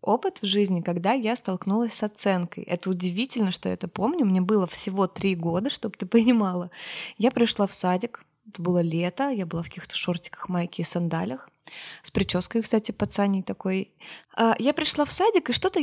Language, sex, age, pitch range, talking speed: Russian, female, 20-39, 185-235 Hz, 180 wpm